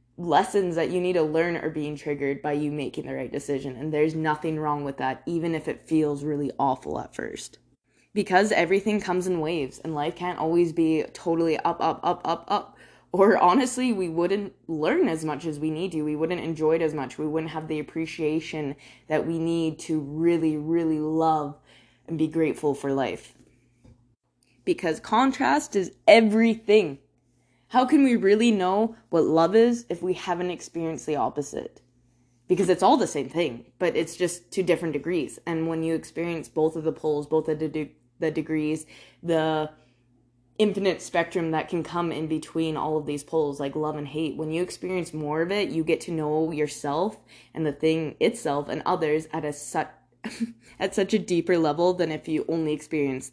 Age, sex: 20-39, female